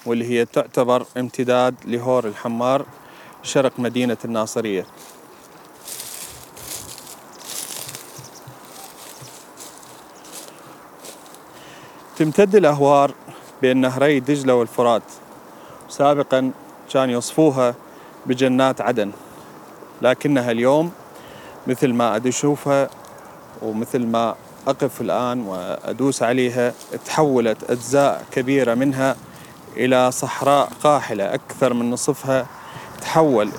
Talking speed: 75 wpm